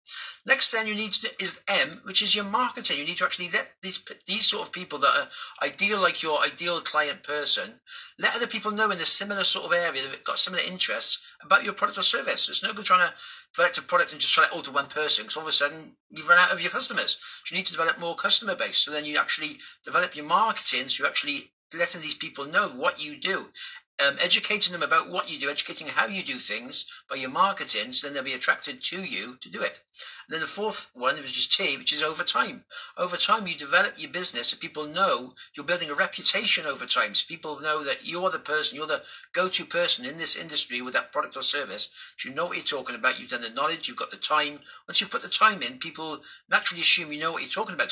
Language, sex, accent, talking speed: English, male, British, 255 wpm